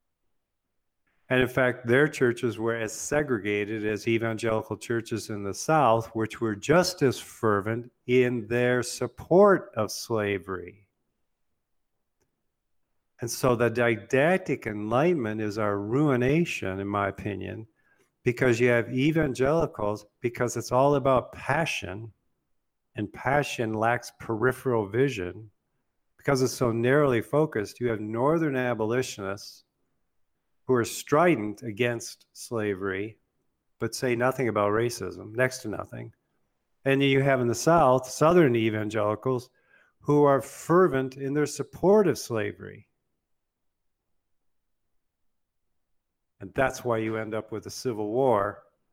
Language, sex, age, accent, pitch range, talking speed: English, male, 50-69, American, 105-130 Hz, 120 wpm